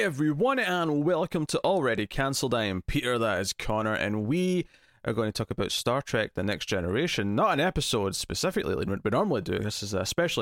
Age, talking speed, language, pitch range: 20-39, 200 wpm, English, 105-140 Hz